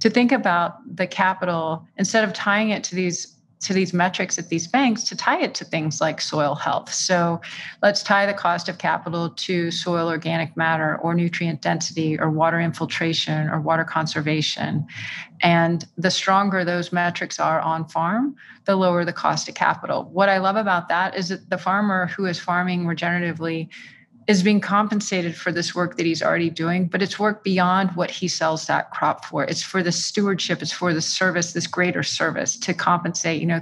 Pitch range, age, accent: 170-195 Hz, 40-59, American